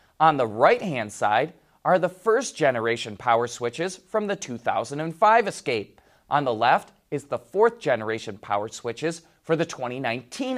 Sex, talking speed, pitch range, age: male, 135 wpm, 120-190 Hz, 30-49